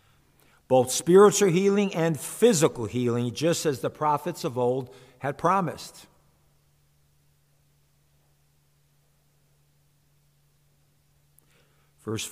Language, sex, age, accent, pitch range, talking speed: English, male, 50-69, American, 115-160 Hz, 75 wpm